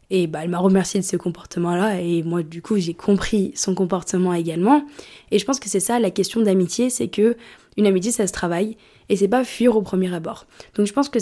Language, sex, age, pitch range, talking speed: French, female, 20-39, 190-225 Hz, 230 wpm